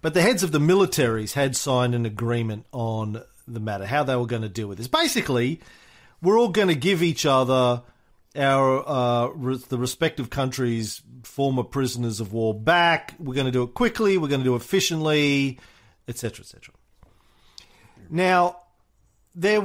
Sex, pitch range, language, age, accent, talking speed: male, 120-175 Hz, English, 40-59, Australian, 170 wpm